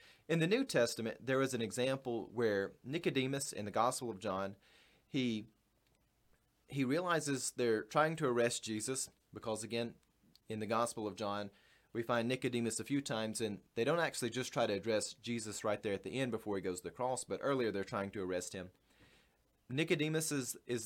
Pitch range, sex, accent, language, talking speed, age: 110-140 Hz, male, American, English, 190 wpm, 30-49